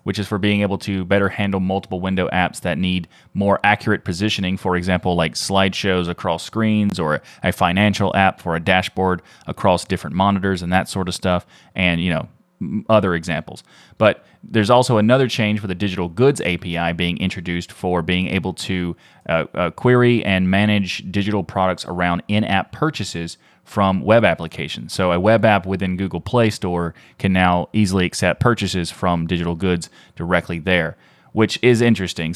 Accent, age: American, 30-49